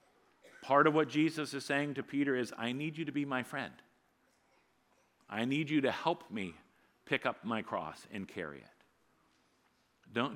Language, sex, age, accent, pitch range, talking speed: English, male, 50-69, American, 130-155 Hz, 175 wpm